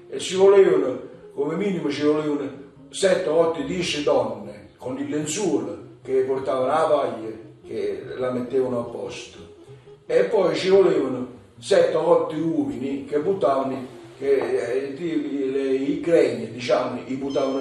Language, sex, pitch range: Italian, male, 130-190 Hz